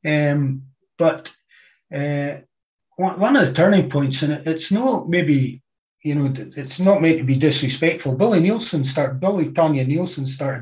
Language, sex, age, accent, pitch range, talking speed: English, male, 40-59, British, 135-170 Hz, 160 wpm